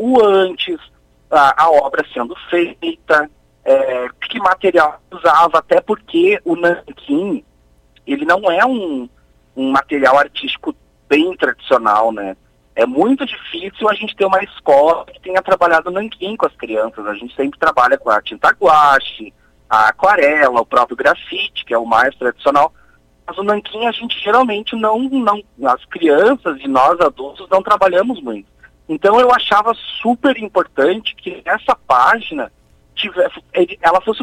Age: 30-49